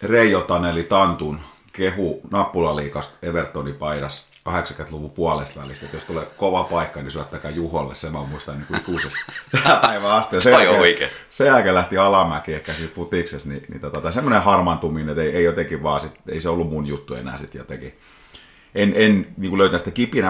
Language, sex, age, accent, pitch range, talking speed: Finnish, male, 30-49, native, 75-90 Hz, 165 wpm